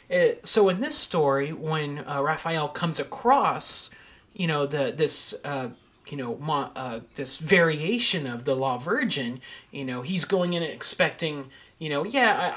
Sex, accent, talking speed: male, American, 170 wpm